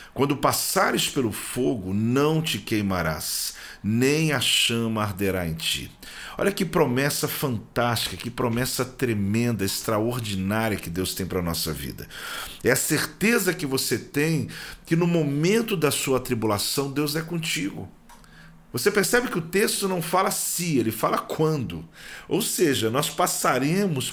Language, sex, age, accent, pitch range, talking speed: Portuguese, male, 40-59, Brazilian, 110-155 Hz, 145 wpm